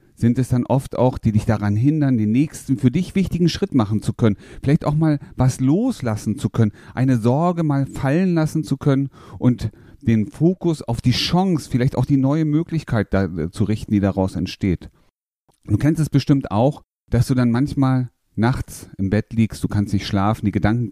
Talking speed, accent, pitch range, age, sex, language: 190 wpm, German, 105-130 Hz, 40-59, male, German